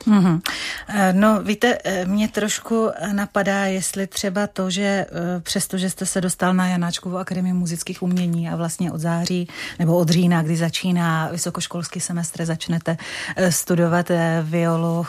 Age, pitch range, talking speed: 30-49, 170-190 Hz, 130 wpm